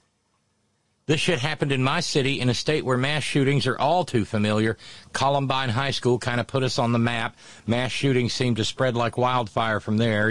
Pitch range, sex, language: 110-135 Hz, male, English